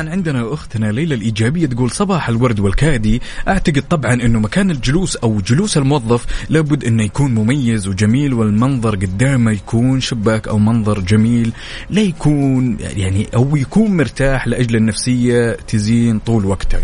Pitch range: 105-135 Hz